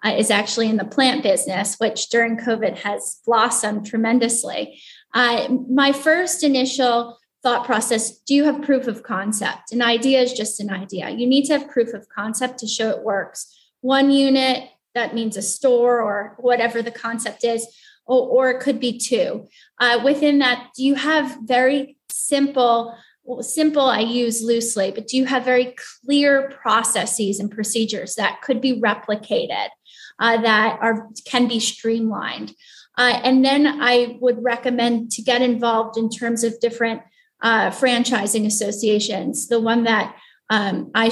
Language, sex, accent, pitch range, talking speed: English, female, American, 220-255 Hz, 160 wpm